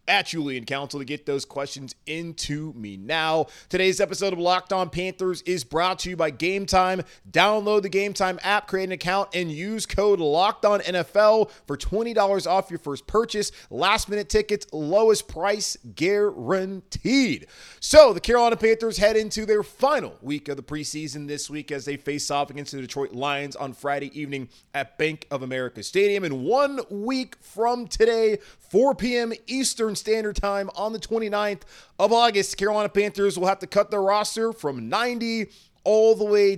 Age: 30-49